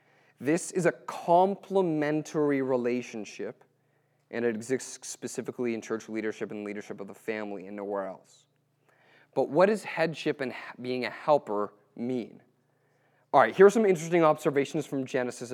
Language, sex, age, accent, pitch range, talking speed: English, male, 30-49, American, 130-195 Hz, 145 wpm